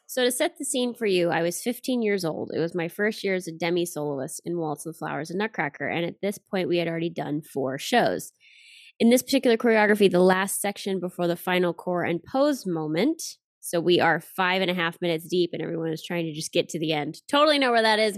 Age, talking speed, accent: 20-39, 250 wpm, American